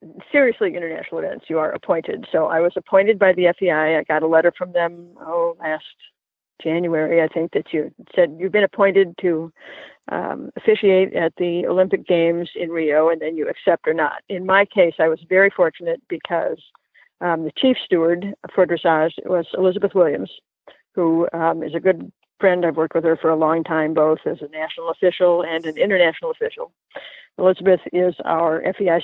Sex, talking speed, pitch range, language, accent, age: female, 185 wpm, 165-195 Hz, English, American, 50-69